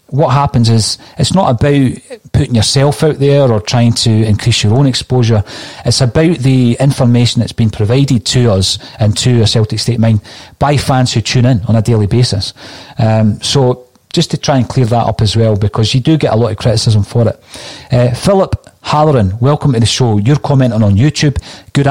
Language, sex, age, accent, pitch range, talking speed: English, male, 40-59, British, 110-130 Hz, 205 wpm